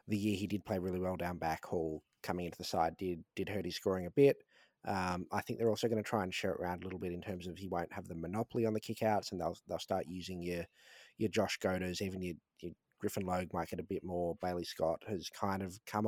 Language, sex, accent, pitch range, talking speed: English, male, Australian, 85-100 Hz, 270 wpm